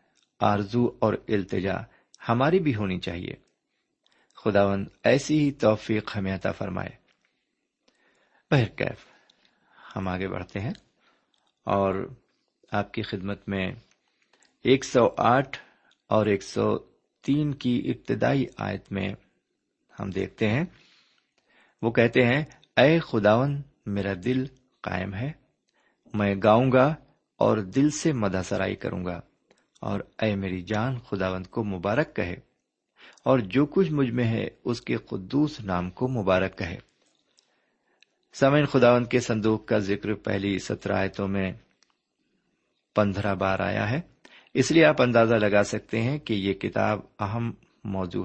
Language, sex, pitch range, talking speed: Urdu, male, 95-125 Hz, 120 wpm